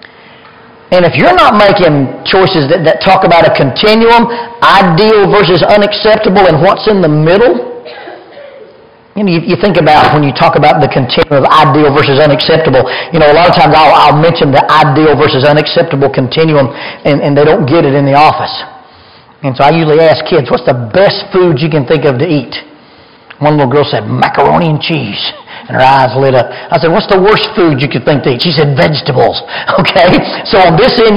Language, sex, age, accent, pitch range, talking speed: English, male, 40-59, American, 150-205 Hz, 200 wpm